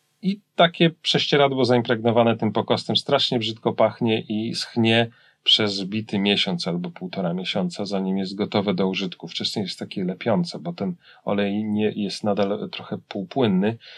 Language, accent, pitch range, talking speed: Polish, native, 105-140 Hz, 145 wpm